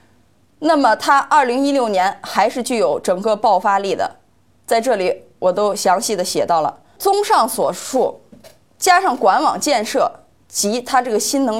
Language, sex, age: Chinese, female, 20-39